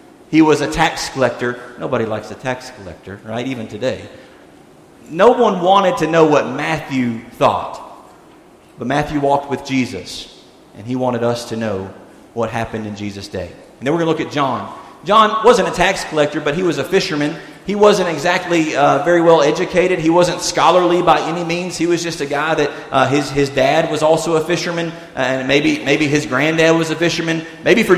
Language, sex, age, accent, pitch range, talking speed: English, male, 40-59, American, 135-175 Hz, 200 wpm